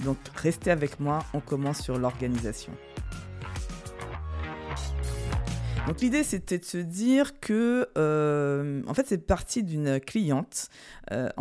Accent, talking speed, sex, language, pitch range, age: French, 120 wpm, female, French, 130-175 Hz, 20-39